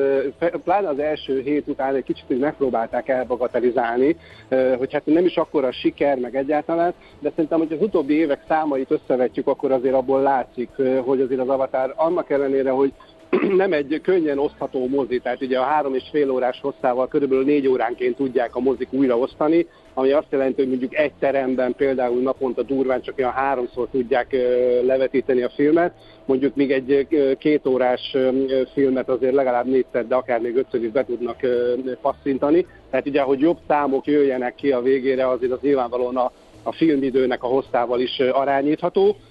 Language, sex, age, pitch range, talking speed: Hungarian, male, 50-69, 130-150 Hz, 170 wpm